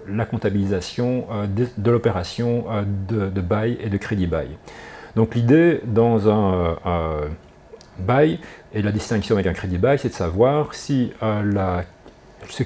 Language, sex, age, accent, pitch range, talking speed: French, male, 40-59, French, 105-130 Hz, 150 wpm